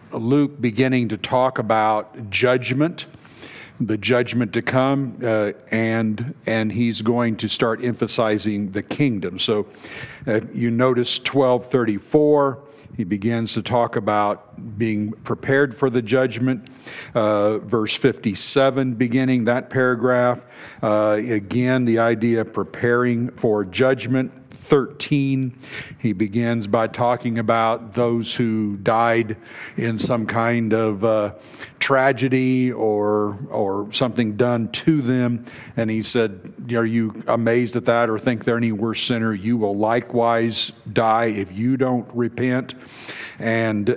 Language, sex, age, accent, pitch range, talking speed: English, male, 50-69, American, 110-130 Hz, 125 wpm